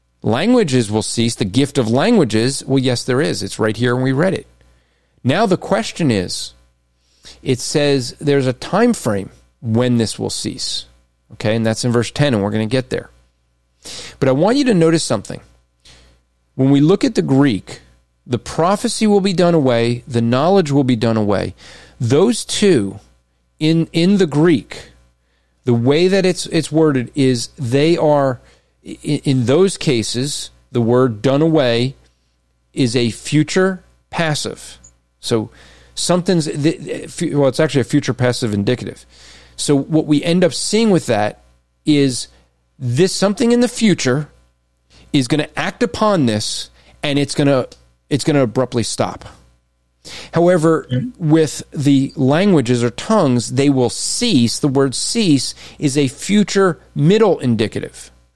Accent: American